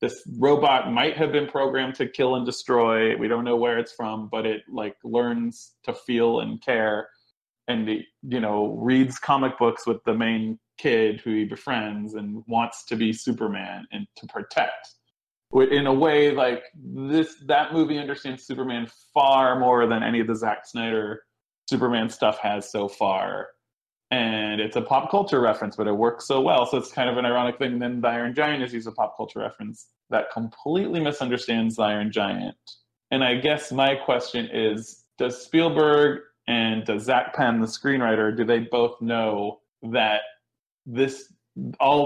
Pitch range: 115-135 Hz